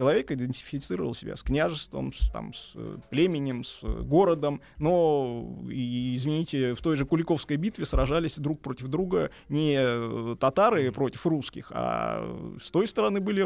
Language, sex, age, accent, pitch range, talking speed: Russian, male, 20-39, native, 120-175 Hz, 145 wpm